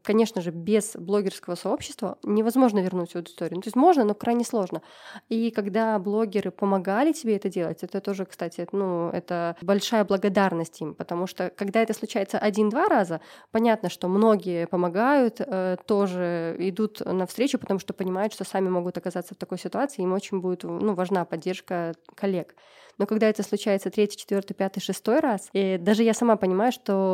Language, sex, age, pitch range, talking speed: Russian, female, 20-39, 180-225 Hz, 170 wpm